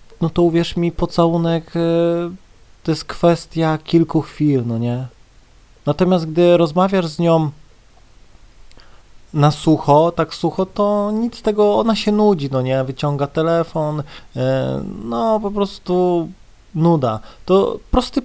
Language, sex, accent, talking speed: Polish, male, native, 120 wpm